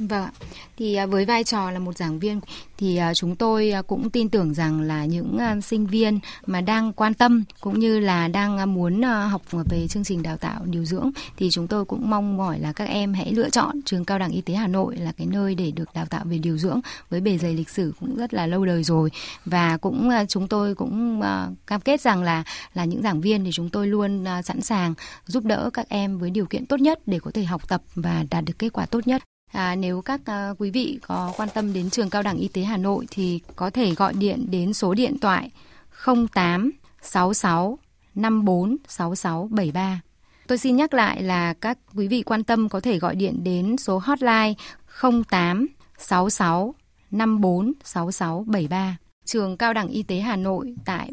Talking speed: 205 wpm